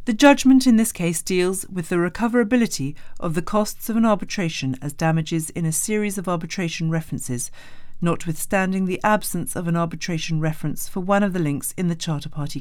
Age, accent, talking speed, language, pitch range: 40-59, British, 185 wpm, English, 150-205 Hz